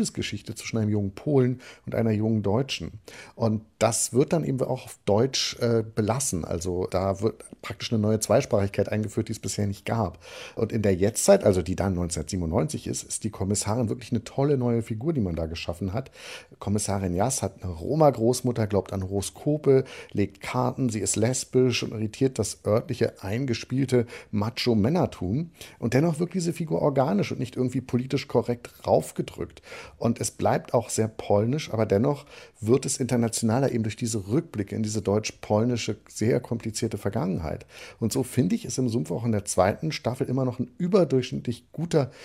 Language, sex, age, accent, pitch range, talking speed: German, male, 50-69, German, 100-125 Hz, 175 wpm